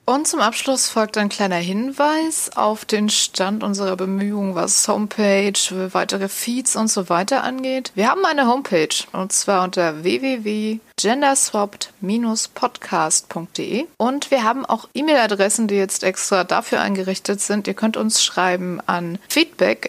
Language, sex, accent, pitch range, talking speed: German, female, German, 195-235 Hz, 140 wpm